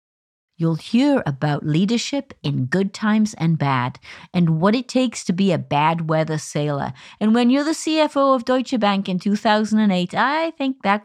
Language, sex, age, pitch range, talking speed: English, female, 50-69, 155-225 Hz, 175 wpm